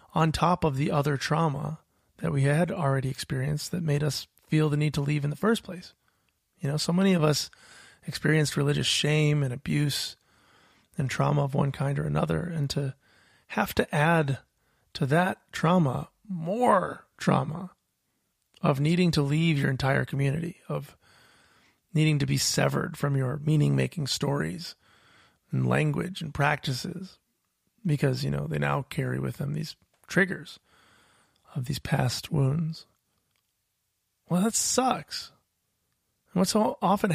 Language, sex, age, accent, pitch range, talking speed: English, male, 30-49, American, 125-165 Hz, 145 wpm